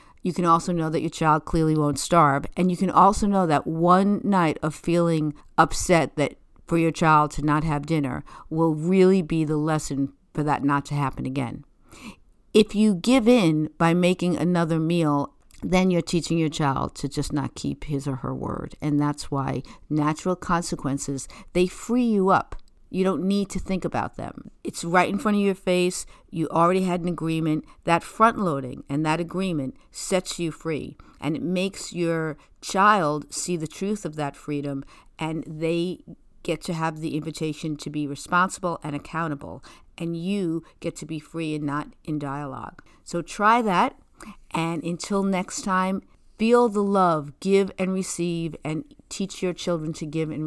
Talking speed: 180 wpm